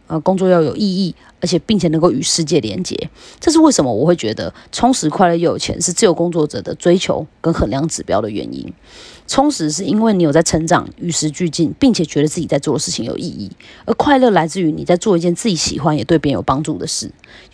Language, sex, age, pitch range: Chinese, female, 30-49, 155-195 Hz